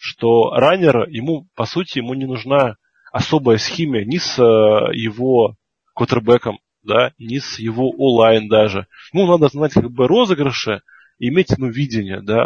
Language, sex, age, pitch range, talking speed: Russian, male, 20-39, 115-165 Hz, 145 wpm